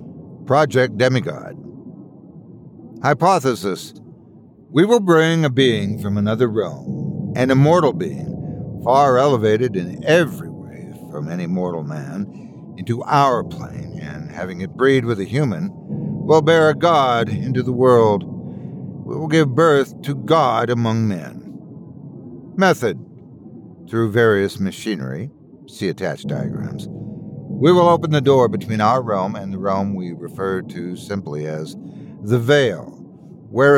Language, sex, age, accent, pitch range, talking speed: English, male, 60-79, American, 110-155 Hz, 130 wpm